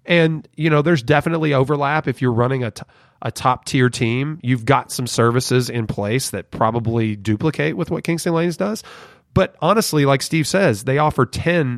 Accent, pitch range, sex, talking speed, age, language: American, 115-150 Hz, male, 190 wpm, 30-49, English